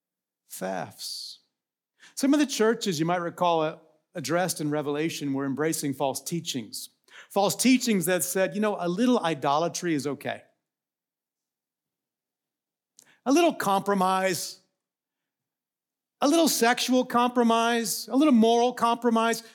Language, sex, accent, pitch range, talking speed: English, male, American, 155-230 Hz, 115 wpm